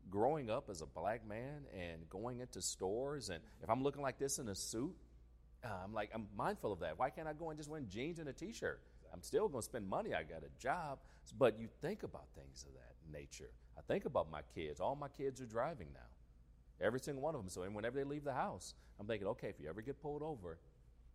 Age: 40-59